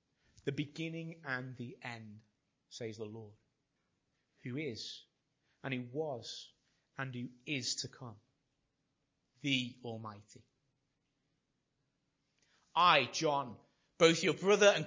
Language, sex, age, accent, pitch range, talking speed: English, male, 30-49, British, 130-170 Hz, 105 wpm